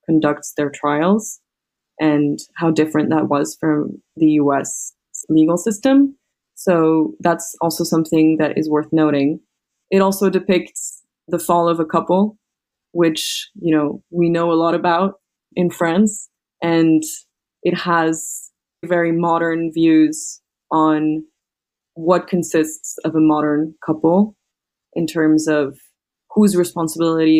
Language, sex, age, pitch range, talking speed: English, female, 20-39, 155-185 Hz, 125 wpm